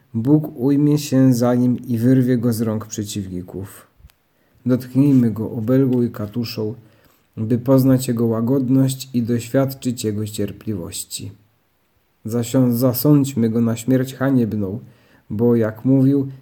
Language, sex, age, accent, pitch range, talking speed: Polish, male, 40-59, native, 110-130 Hz, 115 wpm